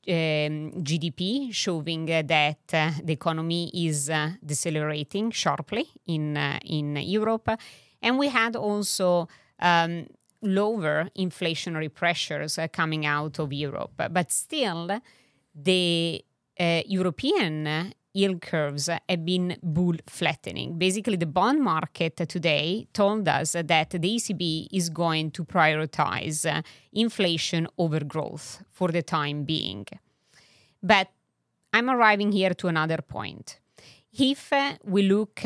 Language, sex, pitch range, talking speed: English, female, 155-190 Hz, 120 wpm